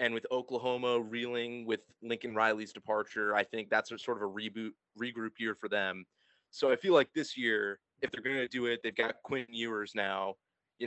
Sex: male